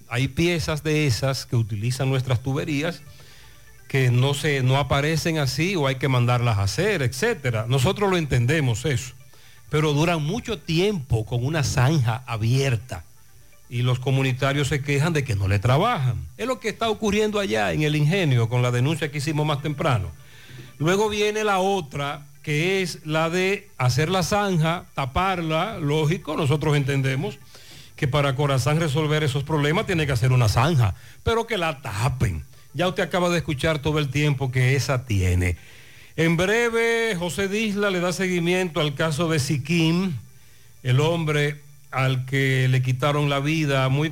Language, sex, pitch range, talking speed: Spanish, male, 130-165 Hz, 165 wpm